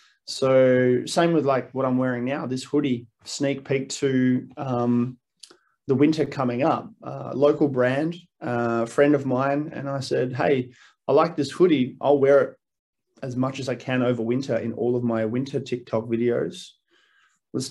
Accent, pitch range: Australian, 115-135 Hz